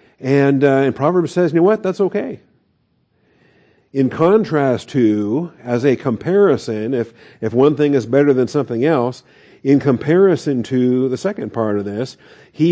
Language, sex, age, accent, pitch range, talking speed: English, male, 50-69, American, 120-145 Hz, 160 wpm